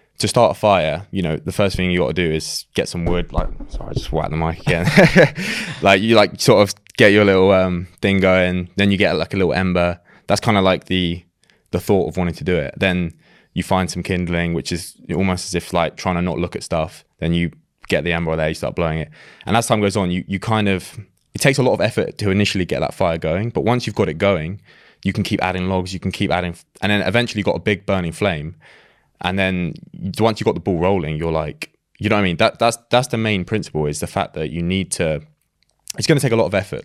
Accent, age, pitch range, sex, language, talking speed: British, 20-39, 85-105 Hz, male, English, 265 wpm